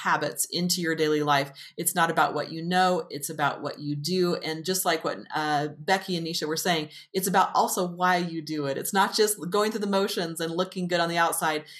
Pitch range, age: 155-190 Hz, 30-49